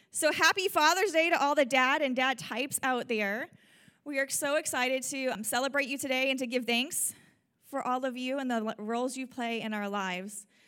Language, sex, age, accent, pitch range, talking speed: English, female, 30-49, American, 220-270 Hz, 210 wpm